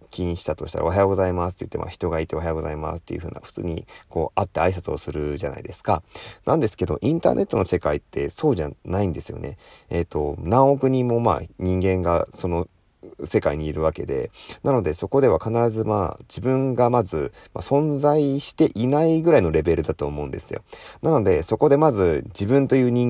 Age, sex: 30-49, male